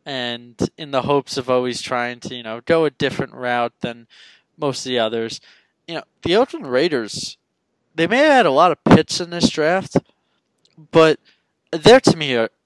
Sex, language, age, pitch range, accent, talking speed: male, English, 20-39, 125-185 Hz, American, 190 wpm